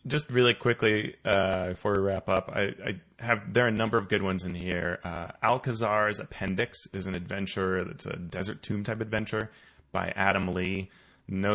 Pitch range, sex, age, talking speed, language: 90-105 Hz, male, 30-49, 185 wpm, English